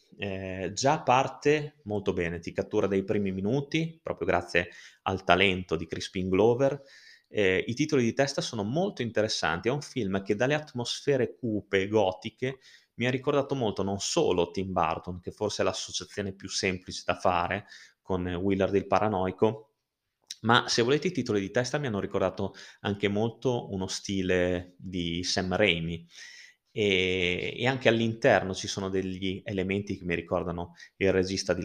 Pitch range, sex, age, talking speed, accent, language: 95-115 Hz, male, 30-49, 155 wpm, native, Italian